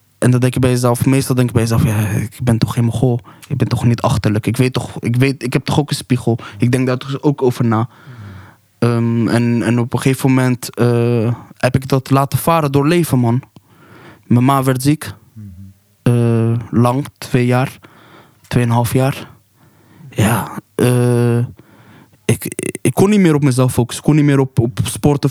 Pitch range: 120-135 Hz